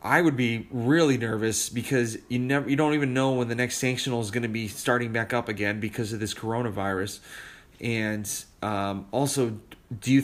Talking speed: 195 wpm